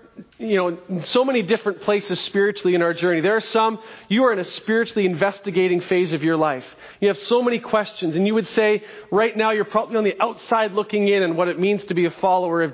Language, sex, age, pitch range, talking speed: English, male, 40-59, 180-220 Hz, 235 wpm